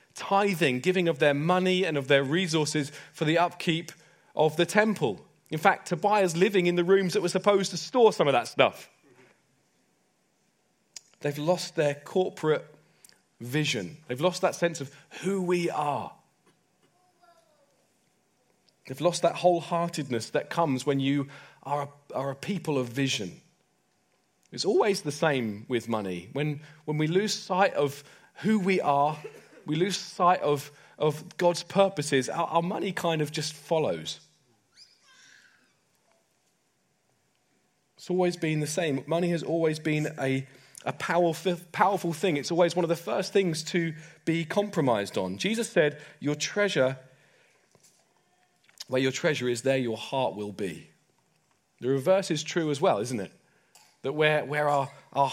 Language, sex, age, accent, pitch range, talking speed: English, male, 30-49, British, 145-180 Hz, 150 wpm